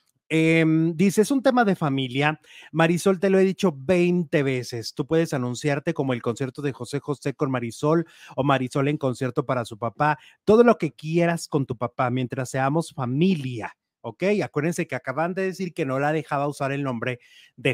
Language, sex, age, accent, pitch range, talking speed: English, male, 30-49, Mexican, 140-170 Hz, 190 wpm